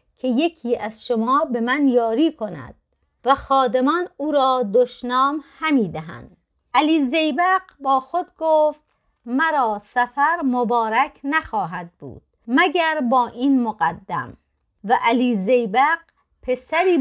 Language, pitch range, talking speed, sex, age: Persian, 225-305 Hz, 115 wpm, female, 30-49